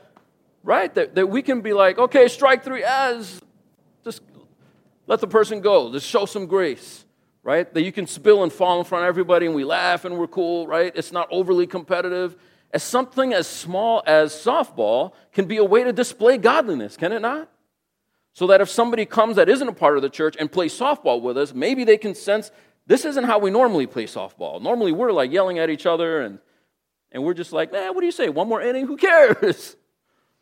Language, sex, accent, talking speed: English, male, American, 215 wpm